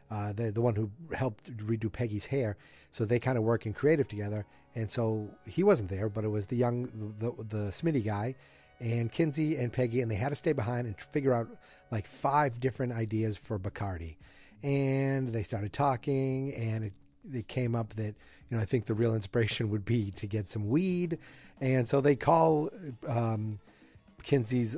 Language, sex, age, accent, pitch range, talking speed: English, male, 40-59, American, 110-140 Hz, 195 wpm